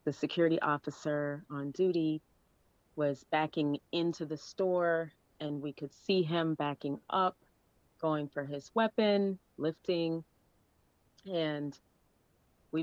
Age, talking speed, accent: 30-49, 110 wpm, American